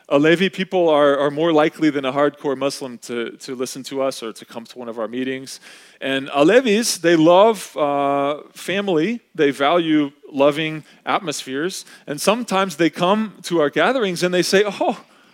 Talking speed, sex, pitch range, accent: 170 wpm, male, 145-220 Hz, American